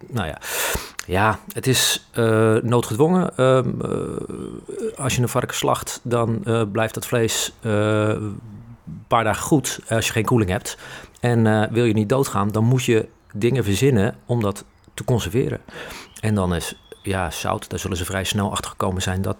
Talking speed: 180 wpm